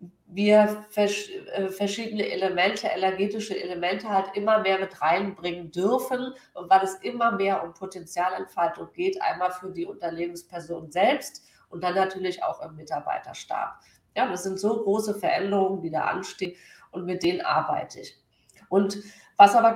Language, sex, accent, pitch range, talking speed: German, female, German, 180-205 Hz, 140 wpm